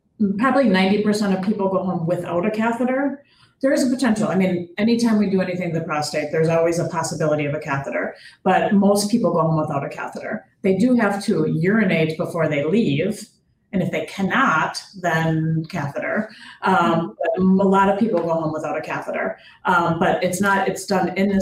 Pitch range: 160-205 Hz